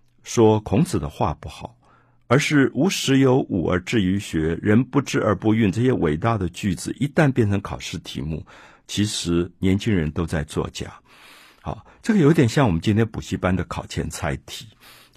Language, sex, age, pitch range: Chinese, male, 50-69, 95-130 Hz